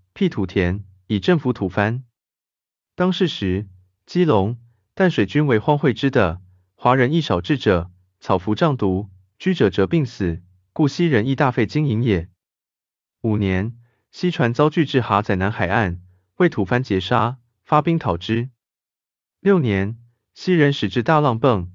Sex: male